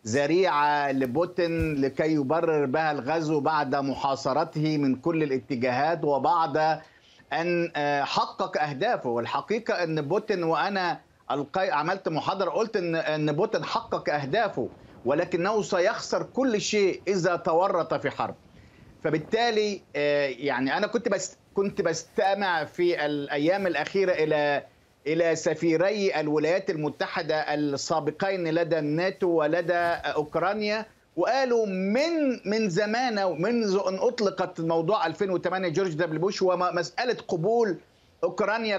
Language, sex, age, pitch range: Arabic, male, 50-69, 155-200 Hz